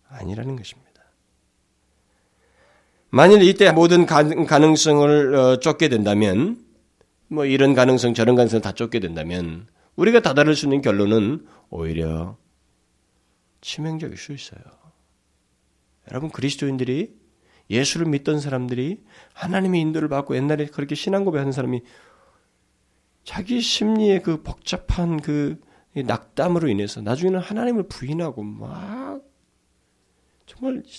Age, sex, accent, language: 40-59, male, native, Korean